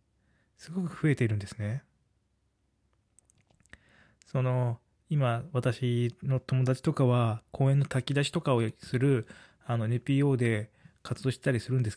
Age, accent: 20-39, native